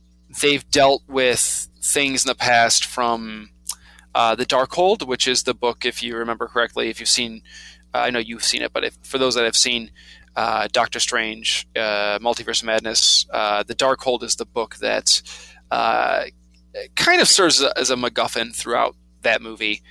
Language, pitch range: English, 105-130 Hz